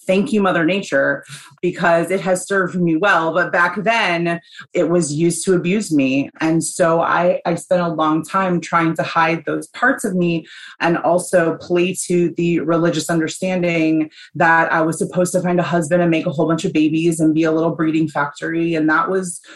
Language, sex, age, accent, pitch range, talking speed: English, female, 30-49, American, 160-185 Hz, 200 wpm